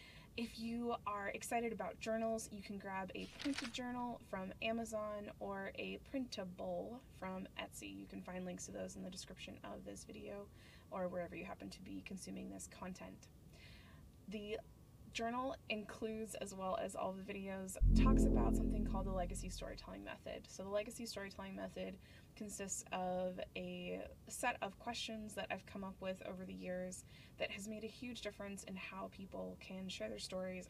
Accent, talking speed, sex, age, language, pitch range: American, 175 wpm, female, 20-39, English, 180-225 Hz